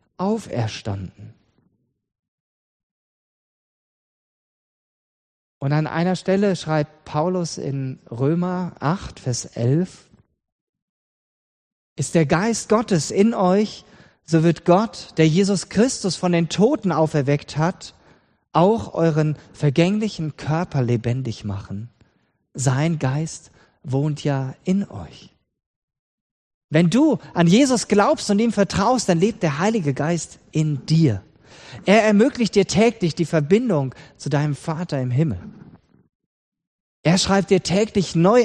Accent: German